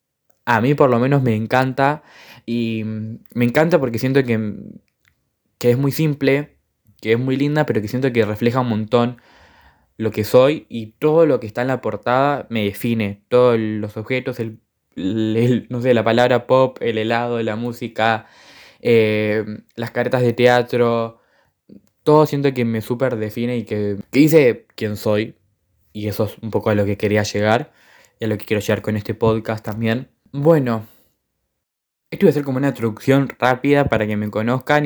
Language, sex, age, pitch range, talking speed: Spanish, male, 10-29, 110-130 Hz, 180 wpm